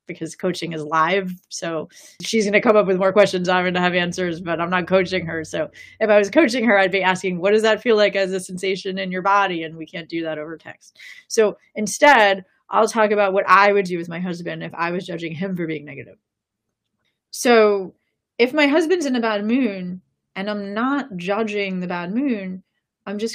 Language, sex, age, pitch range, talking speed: English, female, 30-49, 180-230 Hz, 225 wpm